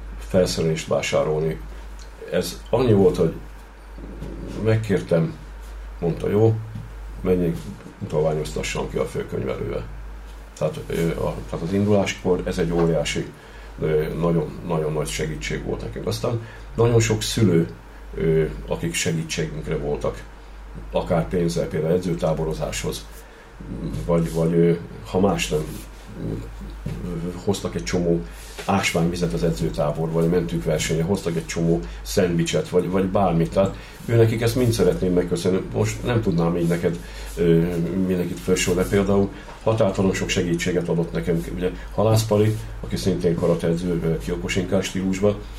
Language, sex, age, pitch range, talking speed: Hungarian, male, 50-69, 85-100 Hz, 115 wpm